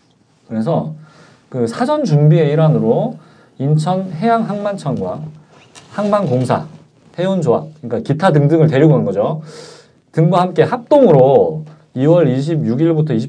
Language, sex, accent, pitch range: Korean, male, native, 120-165 Hz